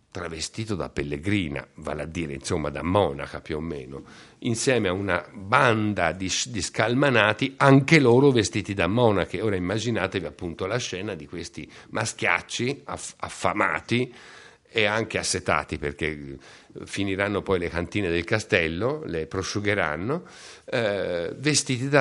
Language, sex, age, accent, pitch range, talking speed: Italian, male, 60-79, native, 95-130 Hz, 125 wpm